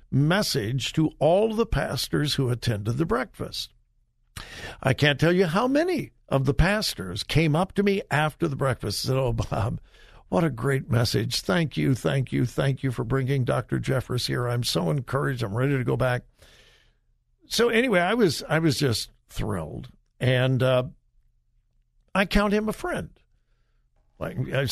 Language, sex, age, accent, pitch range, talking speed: English, male, 60-79, American, 125-170 Hz, 165 wpm